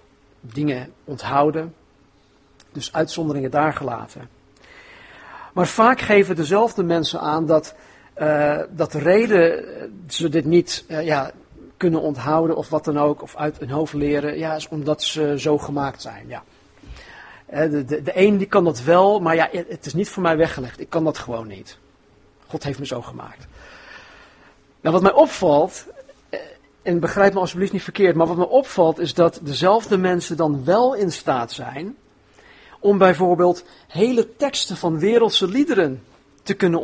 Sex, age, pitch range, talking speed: male, 50-69, 150-195 Hz, 160 wpm